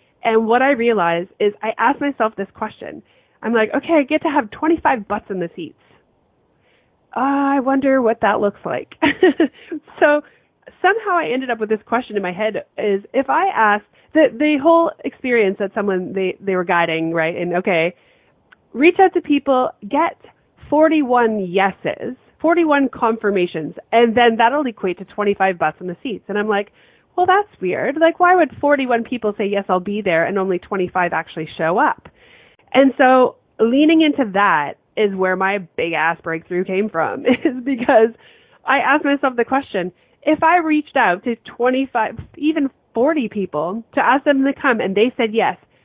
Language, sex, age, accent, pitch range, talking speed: English, female, 30-49, American, 190-280 Hz, 180 wpm